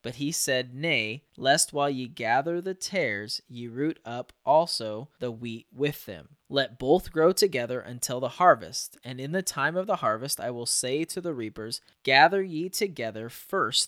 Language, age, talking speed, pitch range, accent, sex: English, 20-39, 180 wpm, 120-150 Hz, American, male